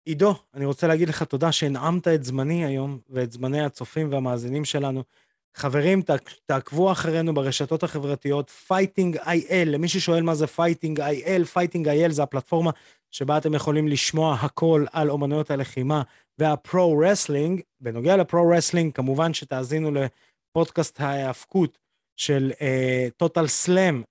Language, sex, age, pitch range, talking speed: Hebrew, male, 20-39, 140-165 Hz, 120 wpm